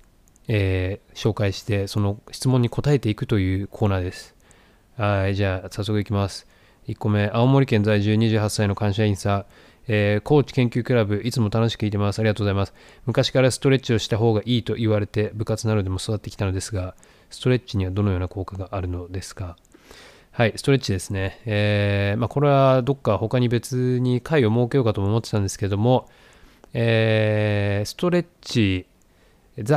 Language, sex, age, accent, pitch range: Japanese, male, 20-39, native, 100-135 Hz